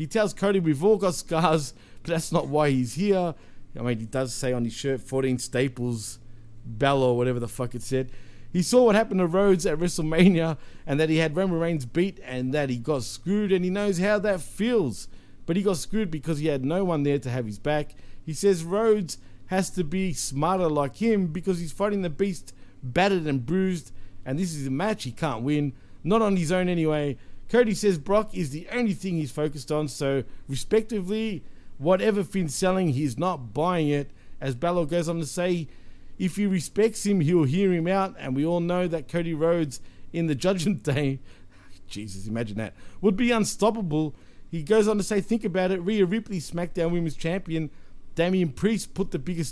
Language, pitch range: English, 130-185 Hz